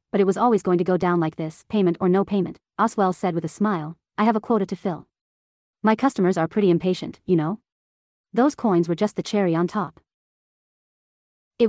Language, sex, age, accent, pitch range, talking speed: English, female, 30-49, American, 170-210 Hz, 210 wpm